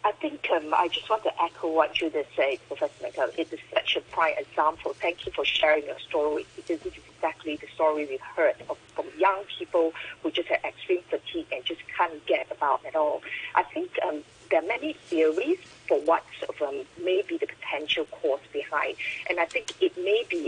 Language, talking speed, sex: English, 210 wpm, female